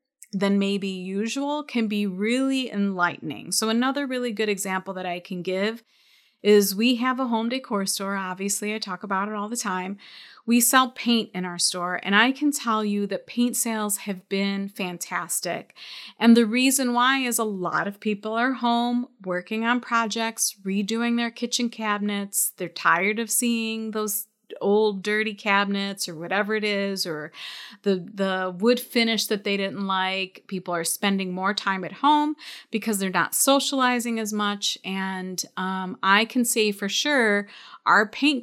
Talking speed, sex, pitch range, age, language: 170 wpm, female, 195-235 Hz, 30-49, English